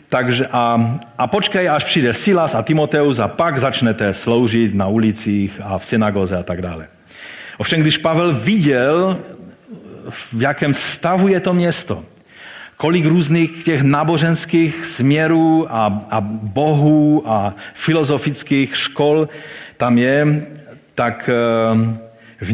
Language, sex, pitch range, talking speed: Czech, male, 105-135 Hz, 120 wpm